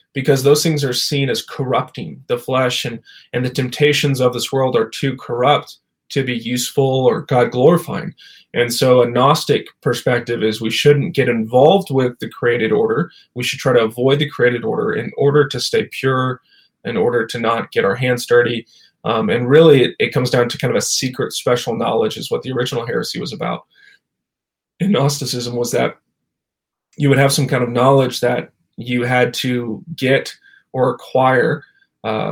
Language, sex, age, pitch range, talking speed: English, male, 20-39, 125-150 Hz, 185 wpm